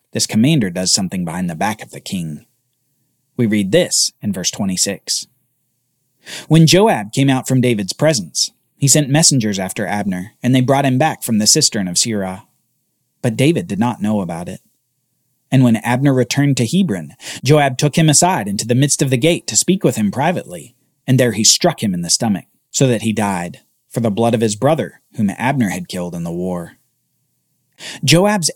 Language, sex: English, male